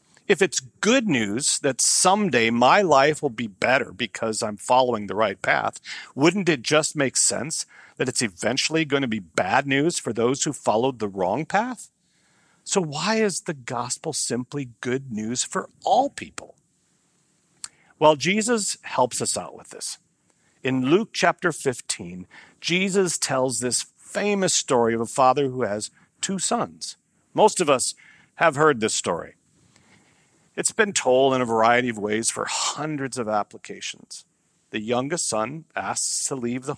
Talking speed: 160 wpm